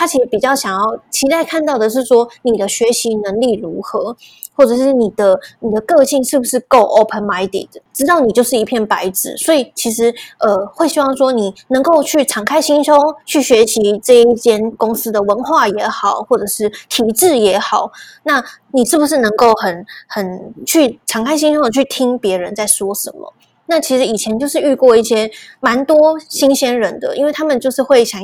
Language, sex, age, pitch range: Chinese, female, 20-39, 215-280 Hz